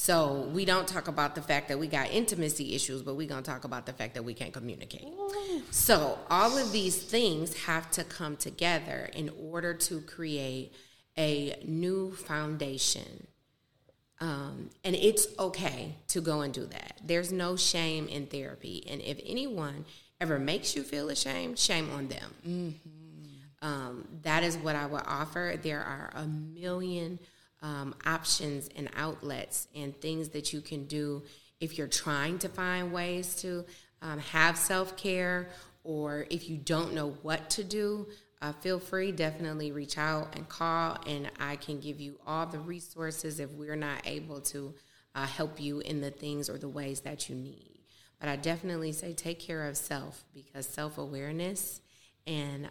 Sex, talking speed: female, 170 wpm